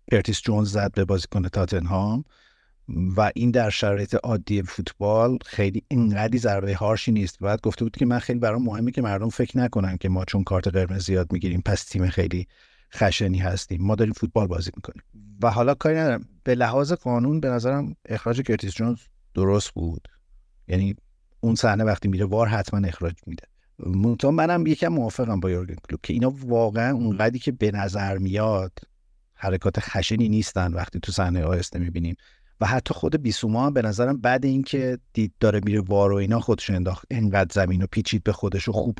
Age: 50-69